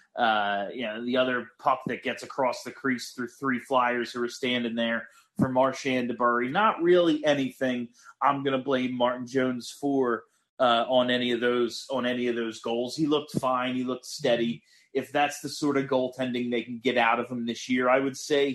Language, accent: English, American